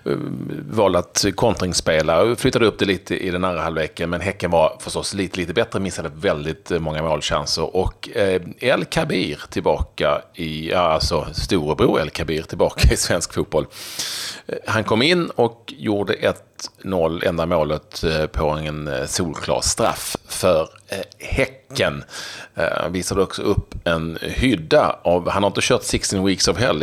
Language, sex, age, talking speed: Swedish, male, 30-49, 150 wpm